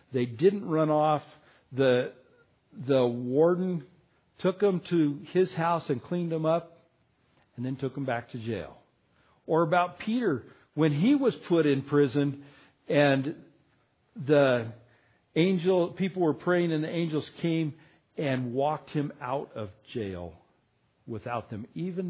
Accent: American